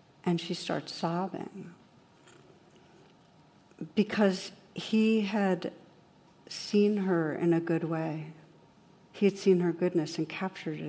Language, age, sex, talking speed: English, 60-79, female, 110 wpm